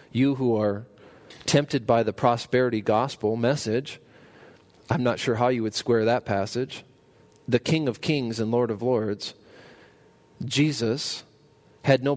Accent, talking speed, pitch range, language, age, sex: American, 145 wpm, 115-140 Hz, English, 40-59, male